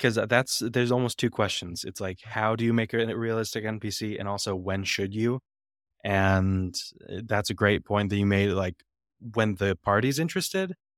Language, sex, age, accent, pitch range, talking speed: English, male, 20-39, American, 95-110 Hz, 180 wpm